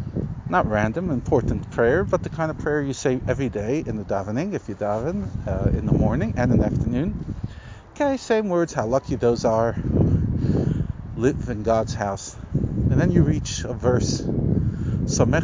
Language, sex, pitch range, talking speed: English, male, 100-130 Hz, 170 wpm